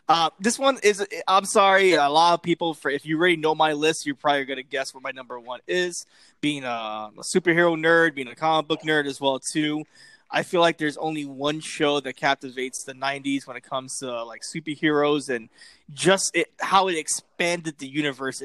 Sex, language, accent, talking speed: male, English, American, 205 wpm